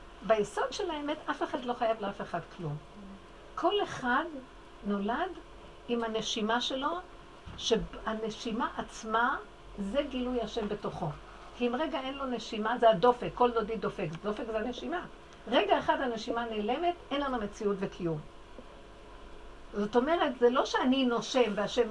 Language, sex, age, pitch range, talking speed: Hebrew, female, 60-79, 185-250 Hz, 140 wpm